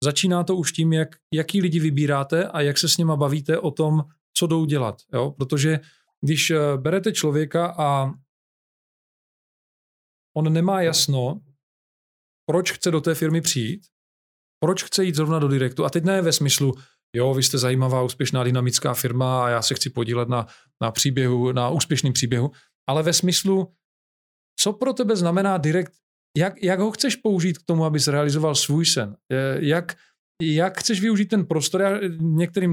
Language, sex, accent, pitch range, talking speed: Czech, male, native, 140-175 Hz, 165 wpm